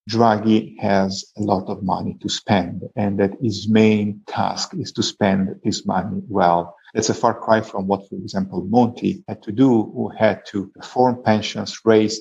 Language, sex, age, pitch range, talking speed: English, male, 50-69, 95-110 Hz, 180 wpm